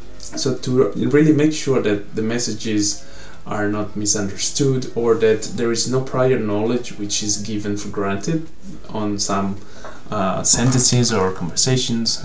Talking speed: 140 wpm